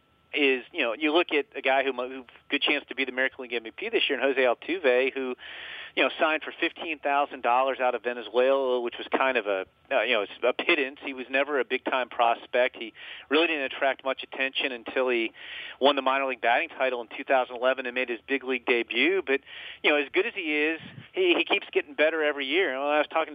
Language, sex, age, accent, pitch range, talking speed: English, male, 40-59, American, 130-155 Hz, 230 wpm